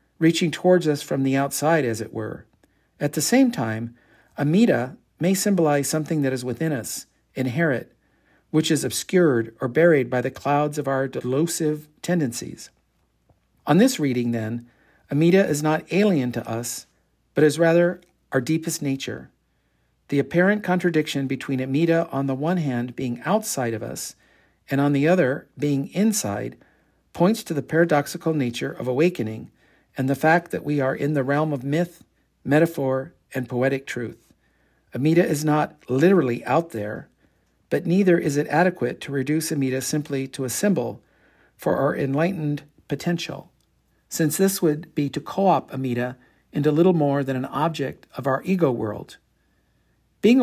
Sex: male